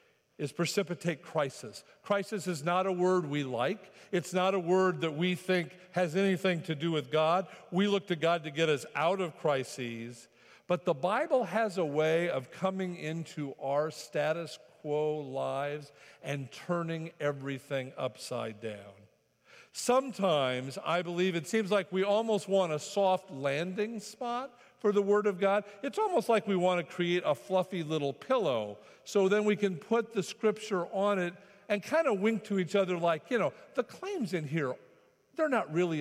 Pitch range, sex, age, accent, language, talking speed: 145-195 Hz, male, 50-69, American, English, 175 wpm